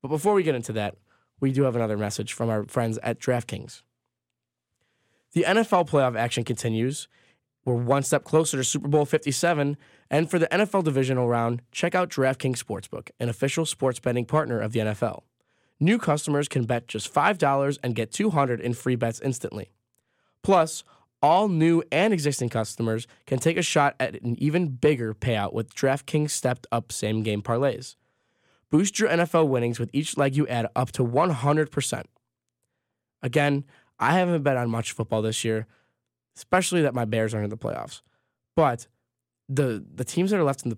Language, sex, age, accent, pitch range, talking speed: English, male, 10-29, American, 115-145 Hz, 175 wpm